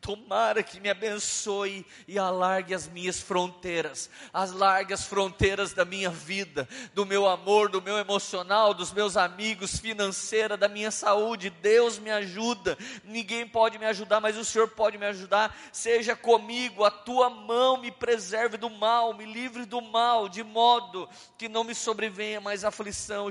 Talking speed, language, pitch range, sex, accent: 165 wpm, Portuguese, 180-230 Hz, male, Brazilian